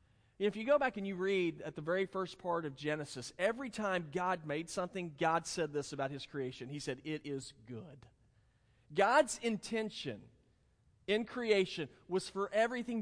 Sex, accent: male, American